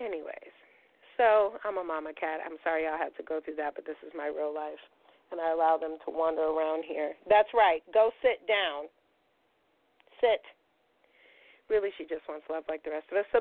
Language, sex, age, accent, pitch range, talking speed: English, female, 30-49, American, 160-200 Hz, 200 wpm